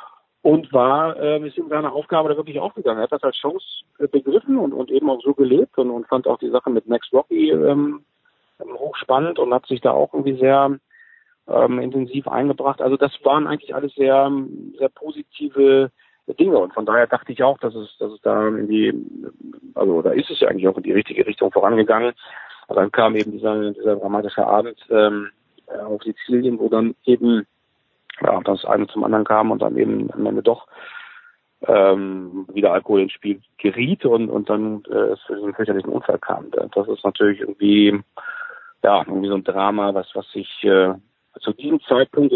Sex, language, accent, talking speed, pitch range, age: male, German, German, 190 wpm, 105-160 Hz, 40-59